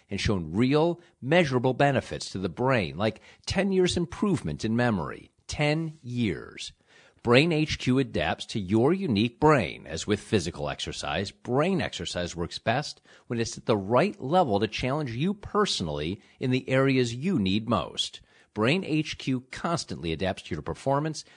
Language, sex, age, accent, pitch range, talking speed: English, male, 50-69, American, 100-145 Hz, 150 wpm